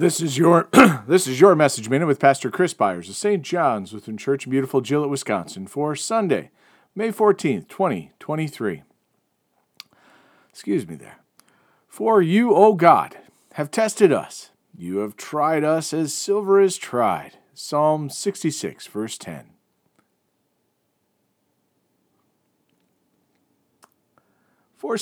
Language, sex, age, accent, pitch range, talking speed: English, male, 40-59, American, 130-185 Hz, 125 wpm